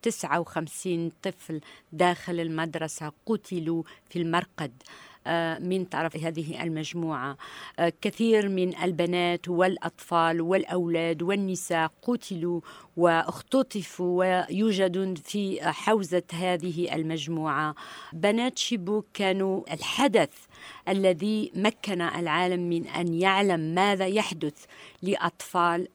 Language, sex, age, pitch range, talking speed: Arabic, female, 50-69, 170-200 Hz, 85 wpm